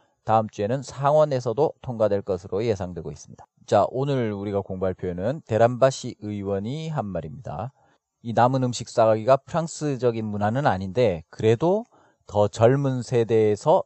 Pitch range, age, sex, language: 105-135 Hz, 40-59, male, Korean